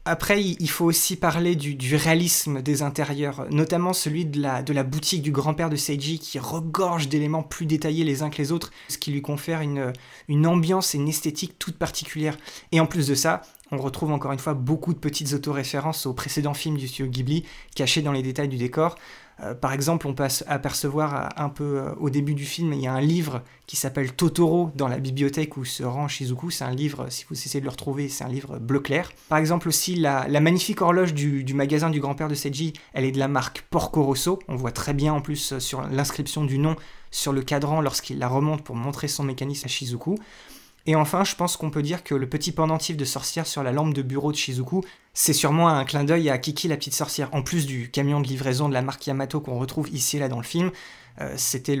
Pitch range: 135-155 Hz